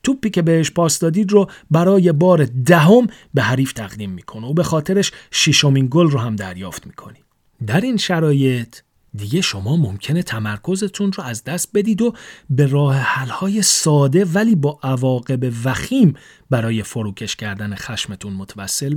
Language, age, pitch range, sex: Persian, 40-59, 115-160 Hz, male